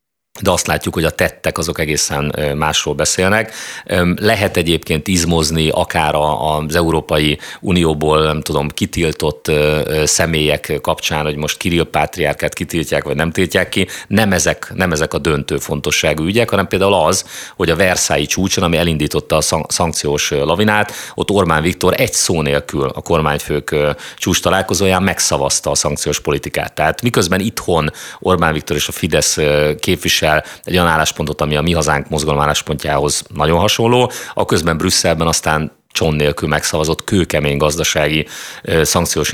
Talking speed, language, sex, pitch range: 140 wpm, Hungarian, male, 75-90 Hz